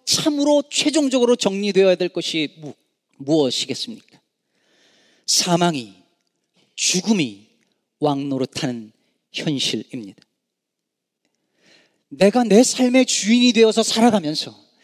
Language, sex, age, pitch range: Korean, male, 40-59, 175-245 Hz